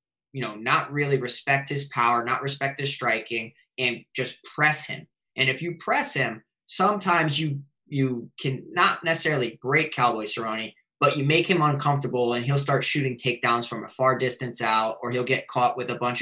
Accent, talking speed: American, 190 wpm